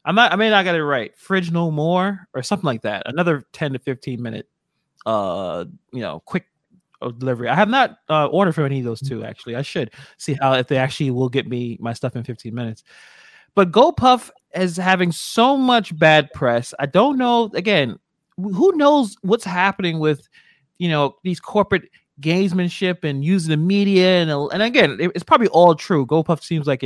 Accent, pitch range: American, 130-180 Hz